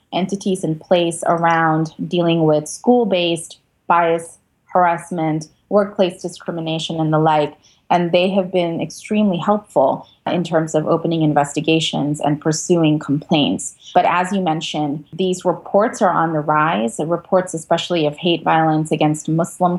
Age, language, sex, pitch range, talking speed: 20-39, English, female, 155-180 Hz, 135 wpm